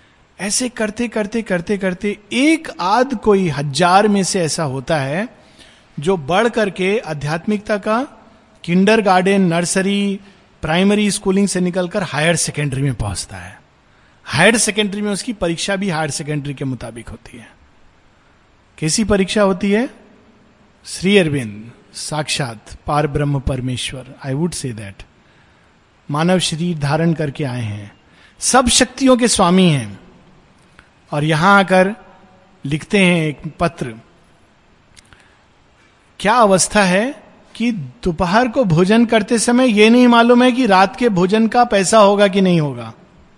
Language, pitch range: Hindi, 155-215 Hz